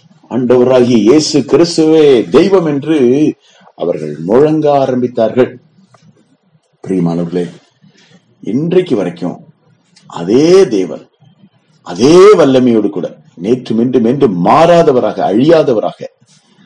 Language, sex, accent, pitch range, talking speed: Tamil, male, native, 115-170 Hz, 70 wpm